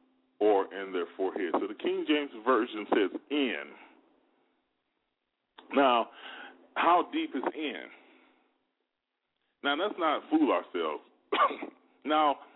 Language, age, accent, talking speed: English, 30-49, American, 105 wpm